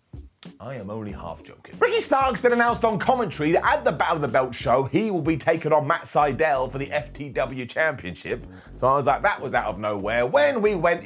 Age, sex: 30-49, male